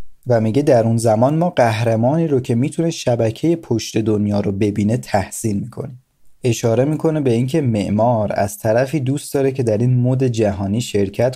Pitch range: 100-130 Hz